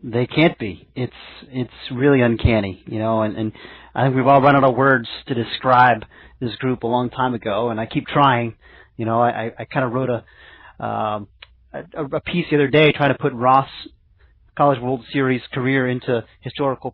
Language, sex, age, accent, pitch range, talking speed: English, male, 30-49, American, 120-145 Hz, 200 wpm